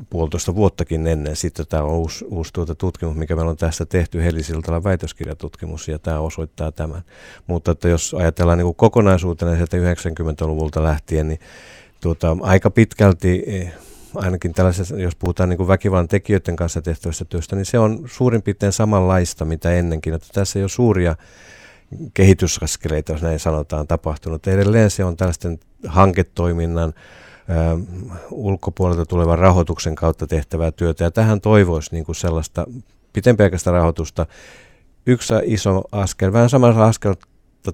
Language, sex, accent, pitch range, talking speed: Finnish, male, native, 80-95 Hz, 135 wpm